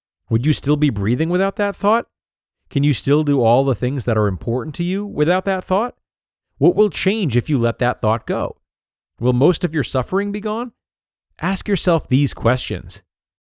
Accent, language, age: American, English, 30-49